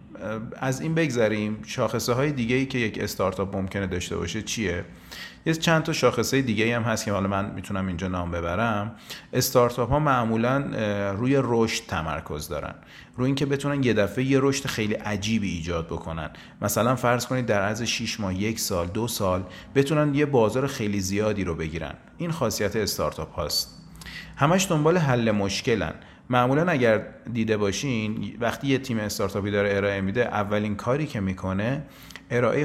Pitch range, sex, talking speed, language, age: 95-130 Hz, male, 160 wpm, Persian, 30-49